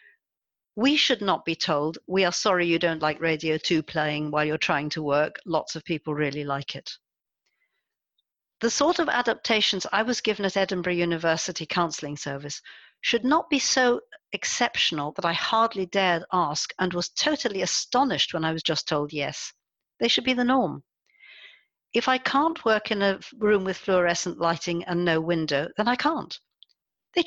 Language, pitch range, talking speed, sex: English, 155-225 Hz, 175 wpm, female